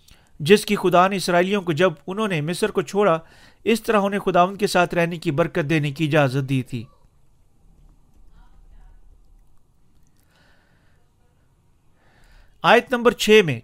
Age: 40-59